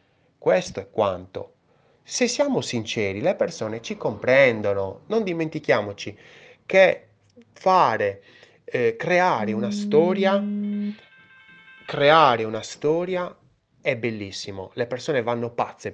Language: Italian